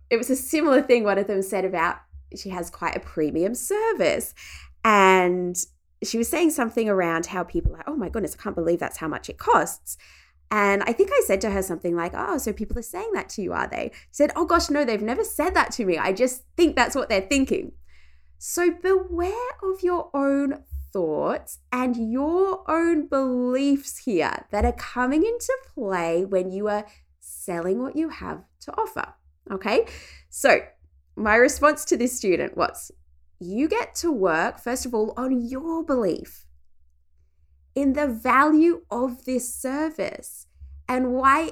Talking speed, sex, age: 180 wpm, female, 20-39